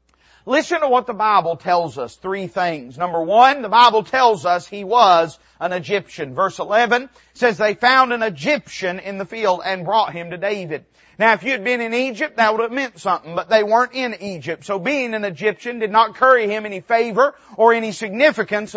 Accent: American